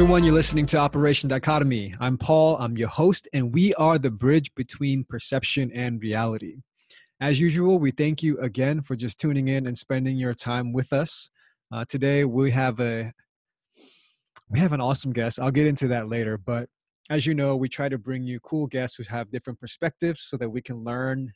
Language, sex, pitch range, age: English, male, 120-145 Hz, 20-39